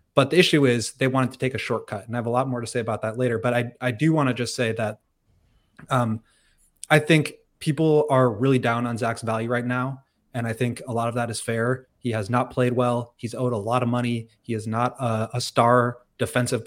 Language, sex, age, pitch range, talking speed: English, male, 20-39, 115-125 Hz, 250 wpm